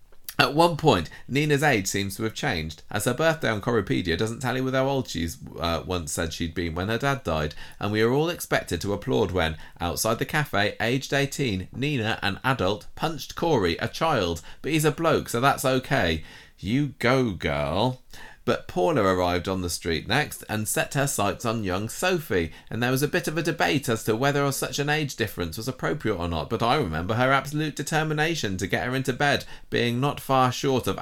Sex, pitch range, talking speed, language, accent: male, 95-135 Hz, 210 wpm, English, British